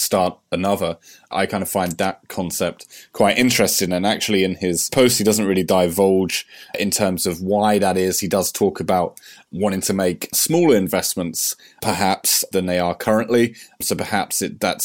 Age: 20-39